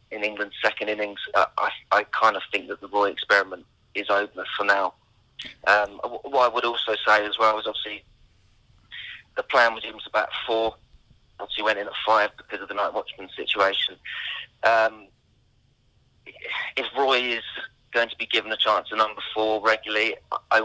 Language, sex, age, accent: English, male, 20-39, British